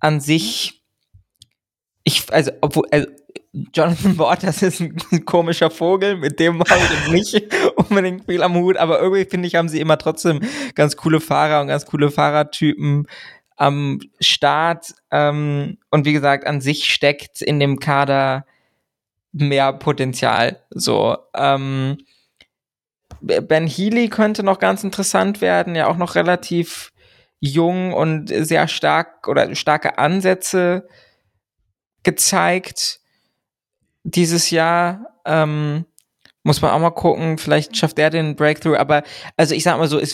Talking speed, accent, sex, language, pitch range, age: 135 wpm, German, male, German, 140-170 Hz, 20-39